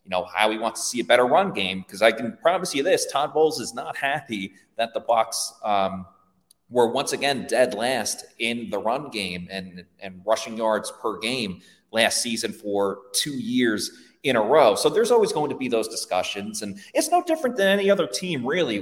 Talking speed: 210 wpm